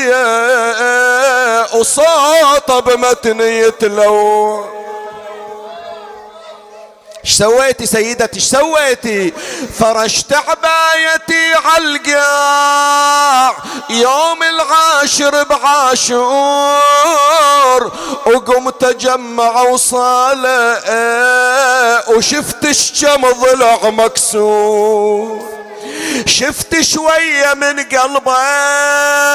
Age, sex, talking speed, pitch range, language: 50-69, male, 55 wpm, 230-285 Hz, Arabic